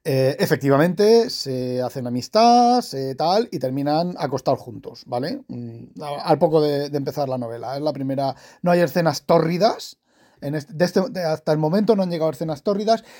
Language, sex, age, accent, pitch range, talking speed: Spanish, male, 40-59, Spanish, 145-195 Hz, 175 wpm